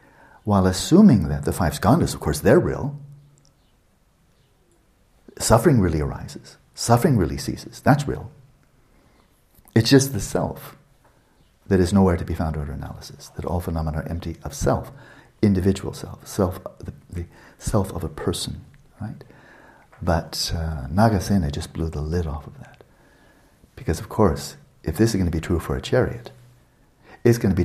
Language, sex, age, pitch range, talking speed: English, male, 60-79, 80-110 Hz, 160 wpm